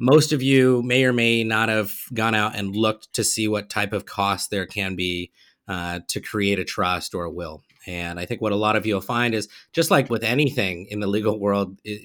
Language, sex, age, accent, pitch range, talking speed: English, male, 30-49, American, 100-120 Hz, 240 wpm